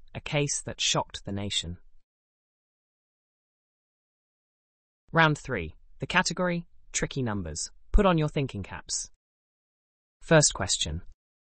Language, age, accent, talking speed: English, 20-39, British, 100 wpm